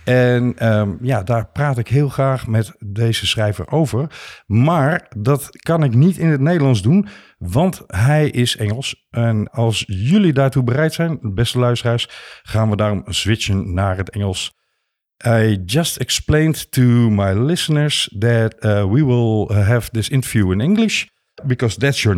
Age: 50-69